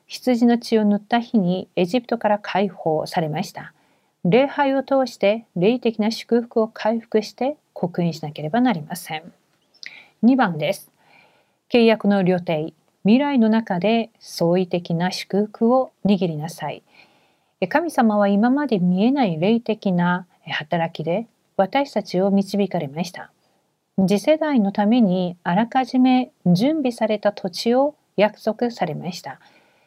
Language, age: Korean, 50-69